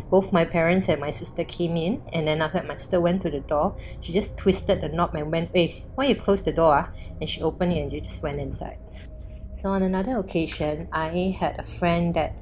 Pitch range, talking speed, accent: 155-180 Hz, 230 wpm, Malaysian